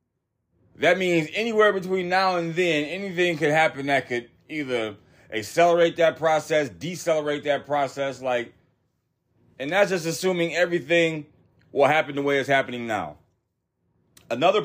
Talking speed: 135 wpm